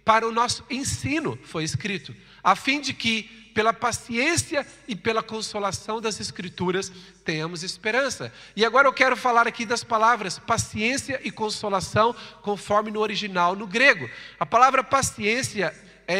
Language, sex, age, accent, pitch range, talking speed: Portuguese, male, 40-59, Brazilian, 190-250 Hz, 145 wpm